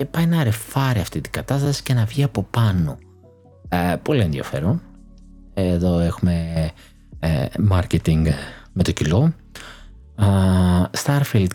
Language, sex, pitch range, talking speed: Greek, male, 85-110 Hz, 120 wpm